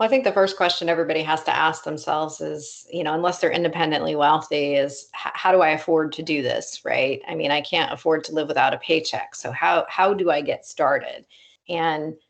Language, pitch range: English, 155-180 Hz